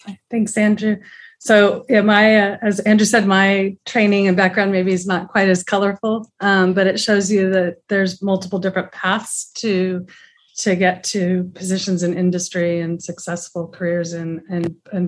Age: 30-49